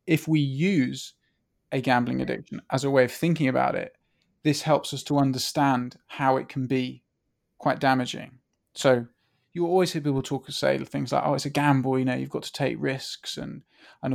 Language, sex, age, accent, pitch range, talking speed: English, male, 20-39, British, 130-150 Hz, 200 wpm